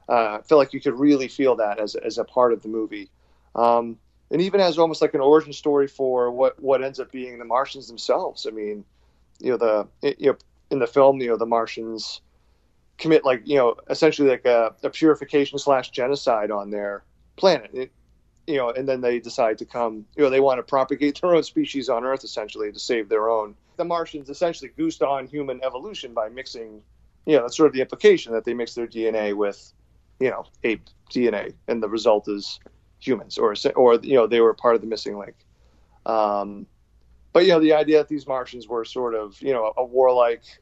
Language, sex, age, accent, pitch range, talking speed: English, male, 40-59, American, 105-135 Hz, 215 wpm